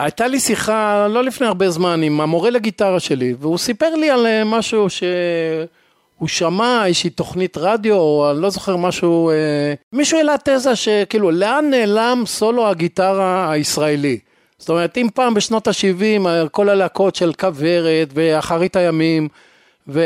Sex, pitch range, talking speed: male, 155-215 Hz, 140 wpm